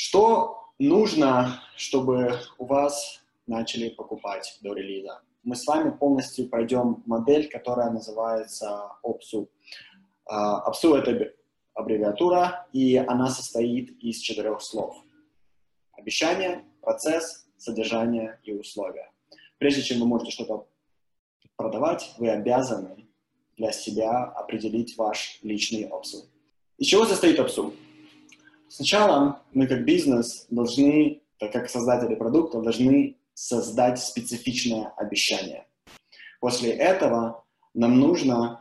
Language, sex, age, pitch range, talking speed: Russian, male, 20-39, 115-160 Hz, 105 wpm